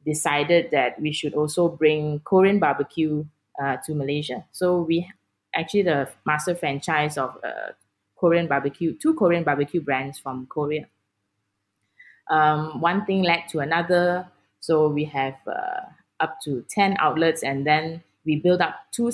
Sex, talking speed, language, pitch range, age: female, 145 wpm, English, 145-185 Hz, 20-39